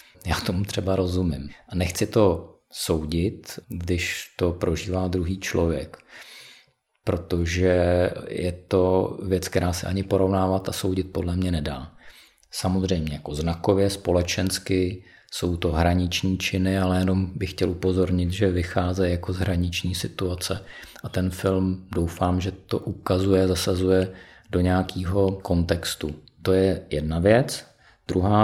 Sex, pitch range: male, 85-95 Hz